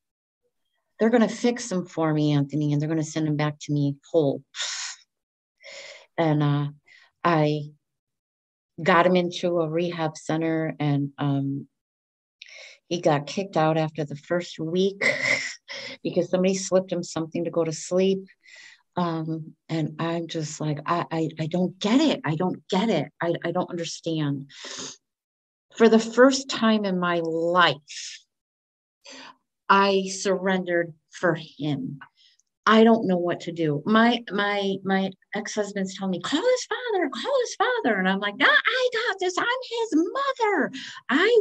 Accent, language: American, English